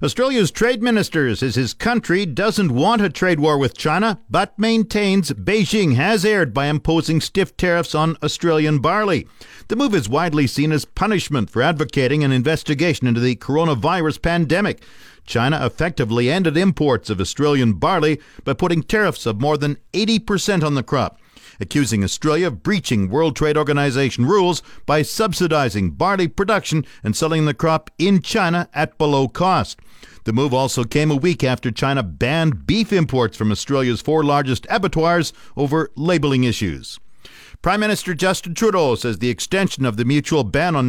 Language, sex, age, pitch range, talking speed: English, male, 50-69, 135-180 Hz, 160 wpm